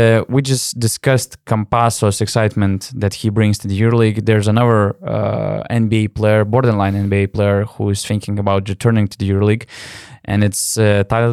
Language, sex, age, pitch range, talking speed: English, male, 20-39, 105-125 Hz, 170 wpm